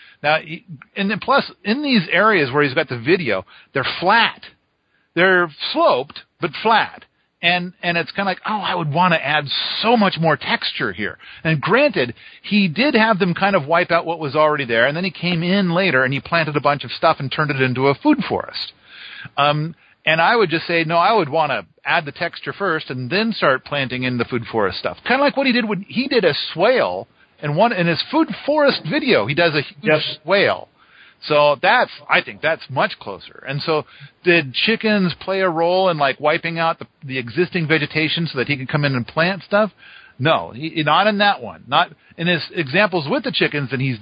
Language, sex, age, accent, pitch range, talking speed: English, male, 50-69, American, 145-195 Hz, 220 wpm